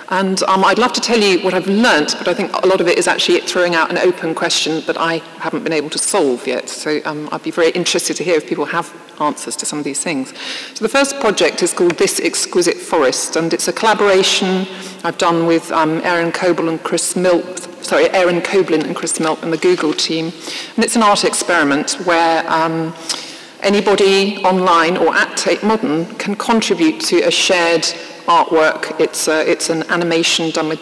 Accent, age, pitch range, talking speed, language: British, 40-59, 165-210 Hz, 210 wpm, English